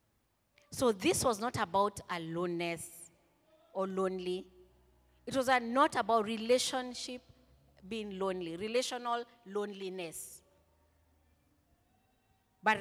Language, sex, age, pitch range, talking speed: English, female, 30-49, 170-245 Hz, 85 wpm